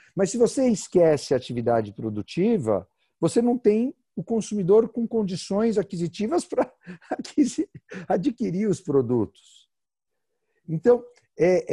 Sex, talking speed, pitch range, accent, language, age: male, 100 wpm, 135-220 Hz, Brazilian, Portuguese, 50-69